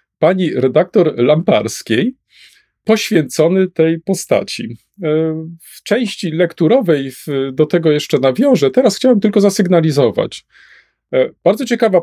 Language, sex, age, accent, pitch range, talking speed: Polish, male, 40-59, native, 120-165 Hz, 95 wpm